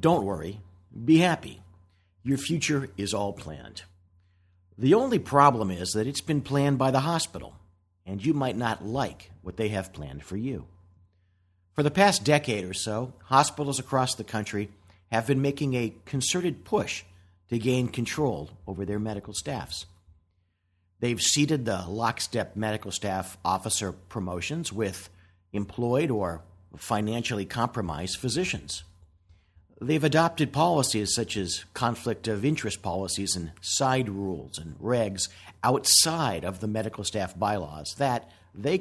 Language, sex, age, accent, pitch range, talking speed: English, male, 50-69, American, 90-125 Hz, 140 wpm